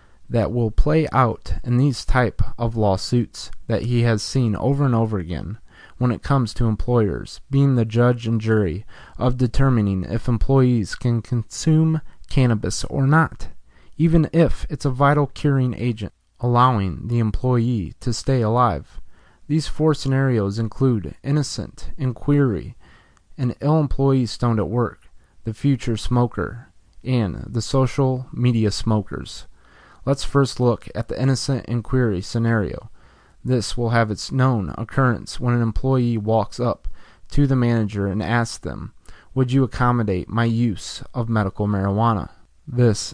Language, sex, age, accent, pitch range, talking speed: English, male, 20-39, American, 105-125 Hz, 145 wpm